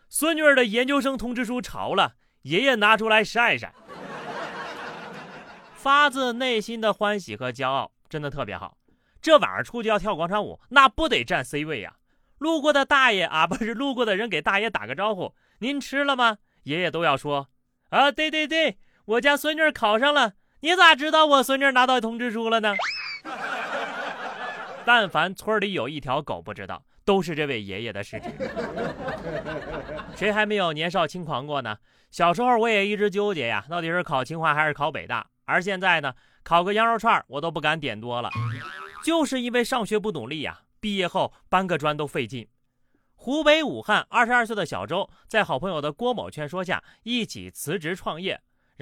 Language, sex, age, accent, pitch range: Chinese, male, 30-49, native, 150-245 Hz